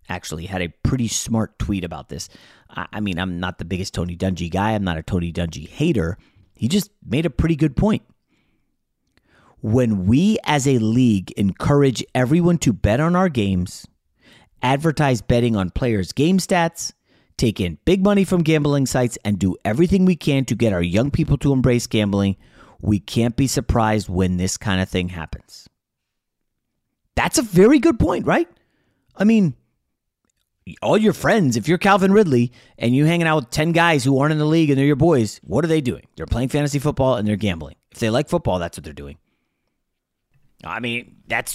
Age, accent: 30-49, American